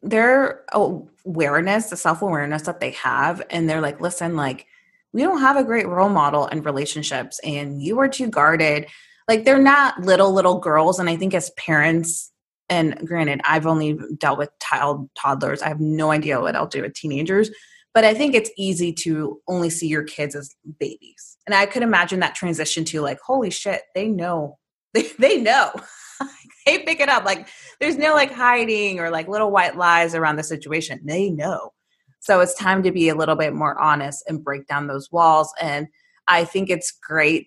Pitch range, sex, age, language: 155-220 Hz, female, 20-39, English